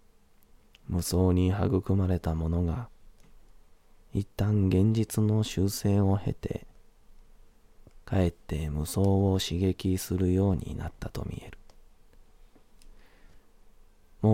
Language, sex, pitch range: Japanese, male, 85-100 Hz